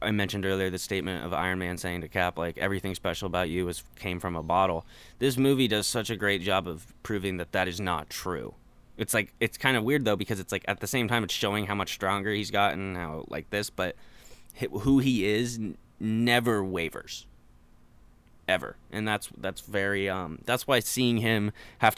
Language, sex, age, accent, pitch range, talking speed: English, male, 20-39, American, 95-120 Hz, 210 wpm